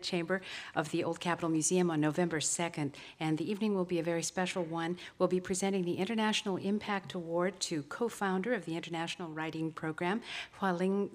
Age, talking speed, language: 50-69, 185 wpm, English